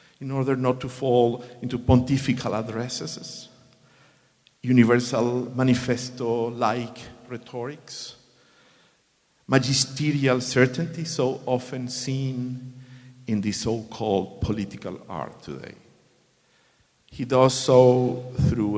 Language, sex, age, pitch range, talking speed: English, male, 50-69, 105-135 Hz, 85 wpm